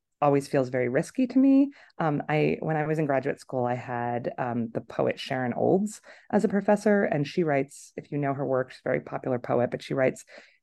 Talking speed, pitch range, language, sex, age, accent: 225 wpm, 125-160 Hz, English, female, 30-49, American